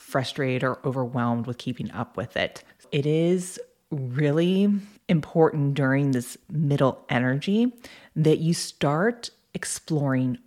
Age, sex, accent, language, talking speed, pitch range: 30-49, female, American, English, 115 wpm, 130-160 Hz